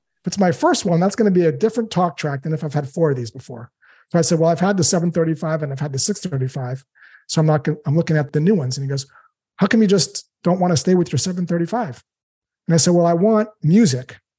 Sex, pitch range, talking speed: male, 145-180 Hz, 265 wpm